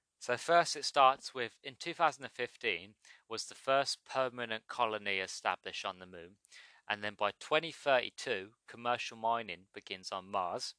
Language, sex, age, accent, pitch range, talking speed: English, male, 30-49, British, 105-130 Hz, 140 wpm